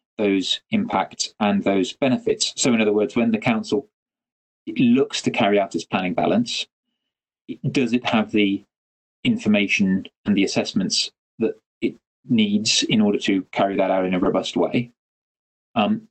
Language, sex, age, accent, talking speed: English, male, 20-39, British, 155 wpm